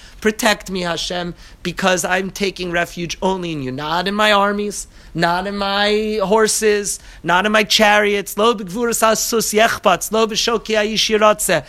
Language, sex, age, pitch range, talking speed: English, male, 30-49, 175-225 Hz, 115 wpm